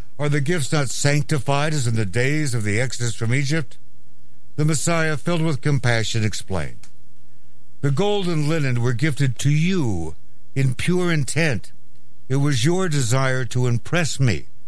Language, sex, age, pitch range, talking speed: English, male, 60-79, 115-145 Hz, 155 wpm